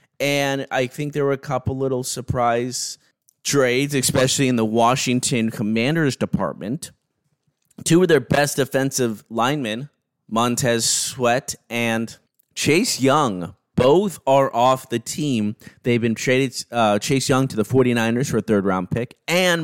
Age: 30-49